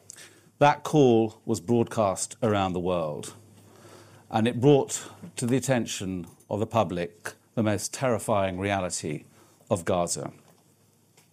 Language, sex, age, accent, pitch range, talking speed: English, male, 50-69, British, 105-125 Hz, 115 wpm